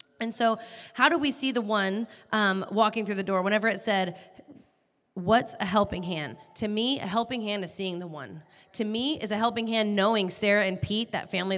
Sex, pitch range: female, 195-235 Hz